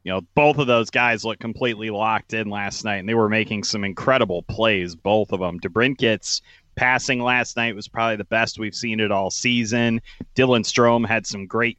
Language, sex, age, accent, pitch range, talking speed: English, male, 30-49, American, 110-130 Hz, 210 wpm